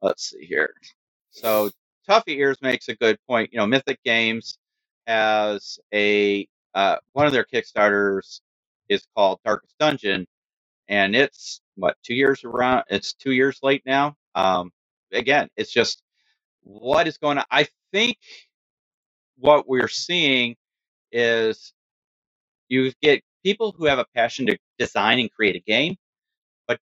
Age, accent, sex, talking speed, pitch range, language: 40-59, American, male, 145 wpm, 105-140 Hz, English